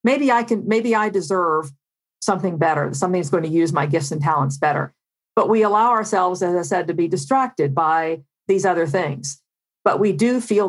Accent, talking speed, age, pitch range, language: American, 200 wpm, 50-69, 155-215 Hz, English